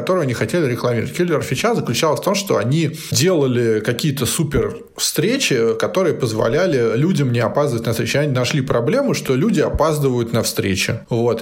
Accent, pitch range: native, 120-155 Hz